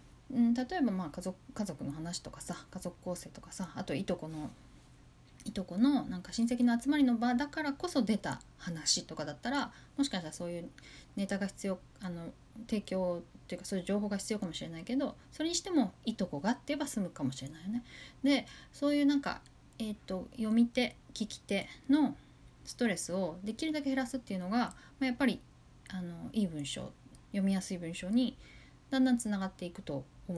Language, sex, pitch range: Japanese, female, 175-250 Hz